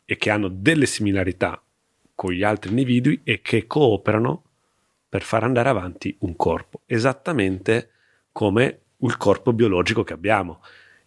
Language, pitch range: Italian, 100-140 Hz